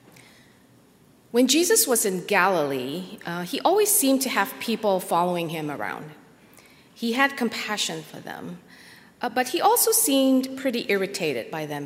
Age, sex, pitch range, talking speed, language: 40-59, female, 175-235 Hz, 145 wpm, English